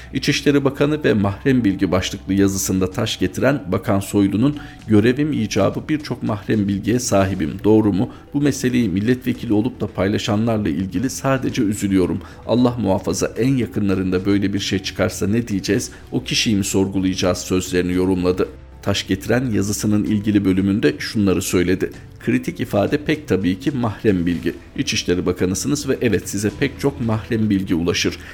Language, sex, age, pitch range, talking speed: Turkish, male, 50-69, 95-115 Hz, 145 wpm